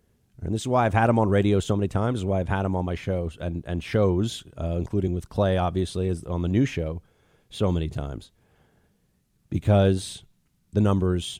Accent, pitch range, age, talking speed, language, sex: American, 95-130 Hz, 40-59, 210 wpm, English, male